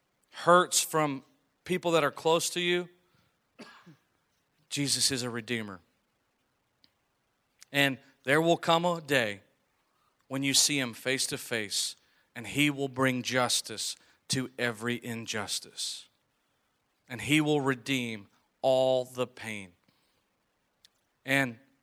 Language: English